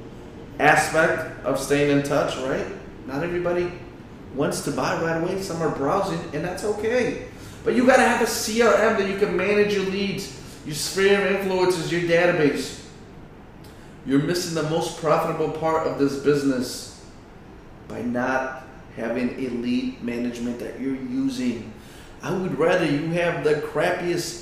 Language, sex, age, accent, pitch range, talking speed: English, male, 30-49, American, 140-200 Hz, 155 wpm